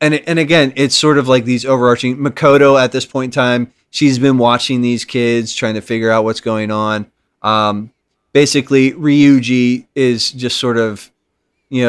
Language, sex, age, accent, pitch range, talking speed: English, male, 20-39, American, 125-170 Hz, 175 wpm